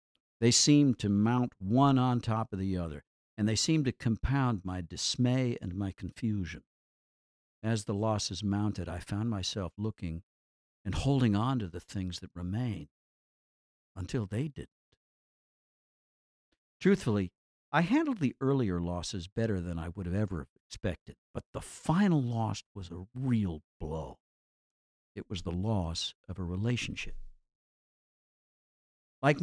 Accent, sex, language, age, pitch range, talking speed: American, male, English, 60-79, 90-130 Hz, 140 wpm